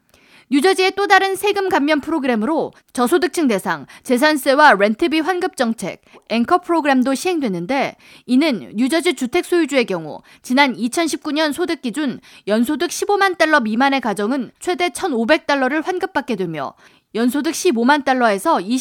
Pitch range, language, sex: 240-345 Hz, Korean, female